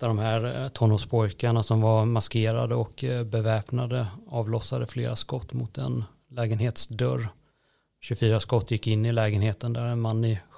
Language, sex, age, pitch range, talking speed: Swedish, male, 30-49, 115-125 Hz, 140 wpm